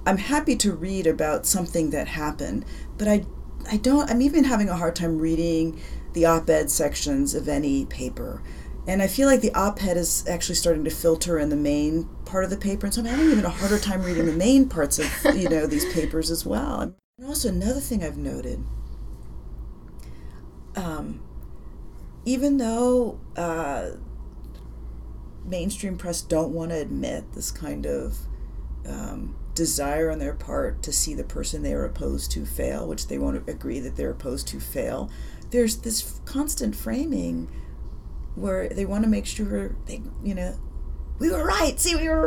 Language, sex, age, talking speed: English, female, 40-59, 175 wpm